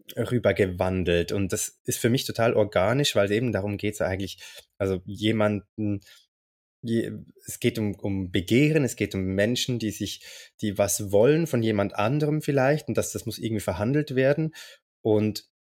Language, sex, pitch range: German, male, 100-115 Hz